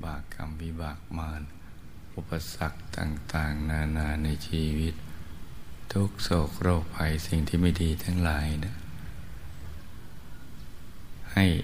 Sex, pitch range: male, 80-85 Hz